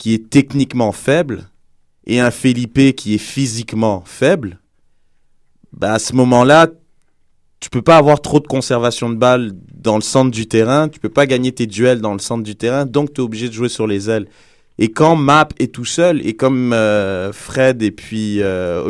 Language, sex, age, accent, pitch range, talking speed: French, male, 30-49, French, 110-140 Hz, 205 wpm